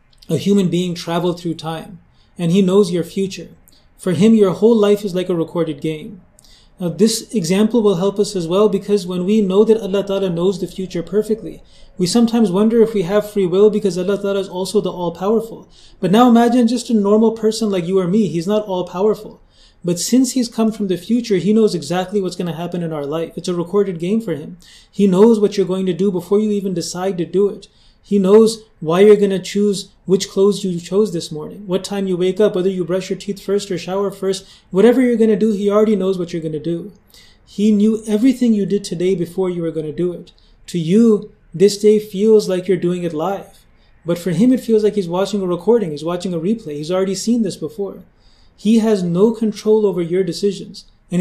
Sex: male